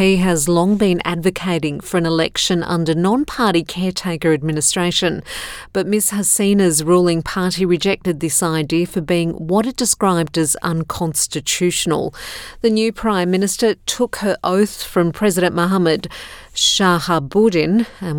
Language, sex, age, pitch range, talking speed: English, female, 50-69, 160-185 Hz, 130 wpm